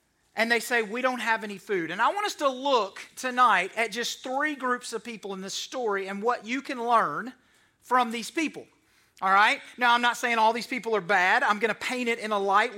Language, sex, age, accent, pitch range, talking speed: English, male, 30-49, American, 215-275 Hz, 240 wpm